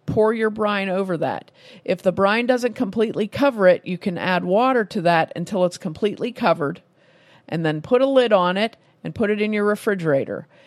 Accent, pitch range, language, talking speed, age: American, 180-235 Hz, English, 195 wpm, 50-69